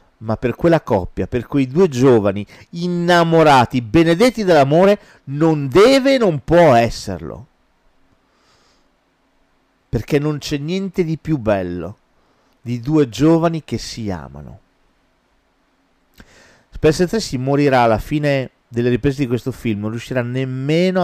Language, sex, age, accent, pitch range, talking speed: Italian, male, 40-59, native, 115-155 Hz, 125 wpm